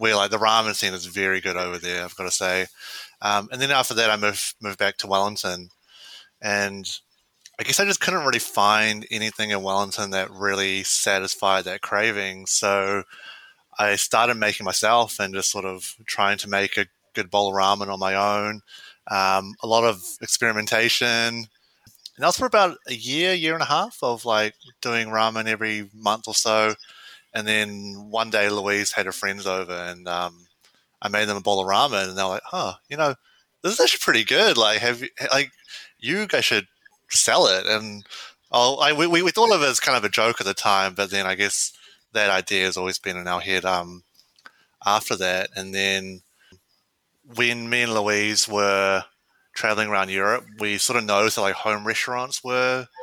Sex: male